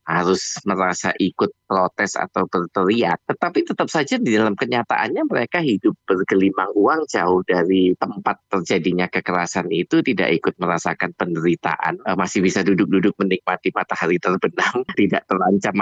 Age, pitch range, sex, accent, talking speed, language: 20-39, 95-115 Hz, male, native, 130 wpm, Indonesian